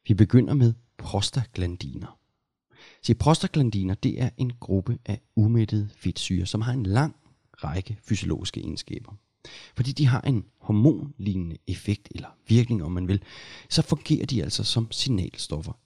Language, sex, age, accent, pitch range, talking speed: Danish, male, 30-49, native, 95-125 Hz, 130 wpm